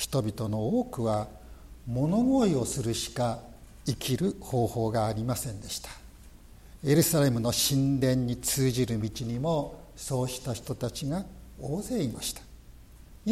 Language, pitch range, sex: Japanese, 115-175 Hz, male